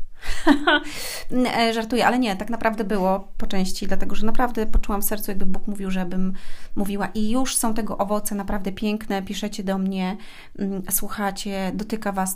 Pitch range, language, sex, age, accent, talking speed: 190-230 Hz, Polish, female, 30-49, native, 160 wpm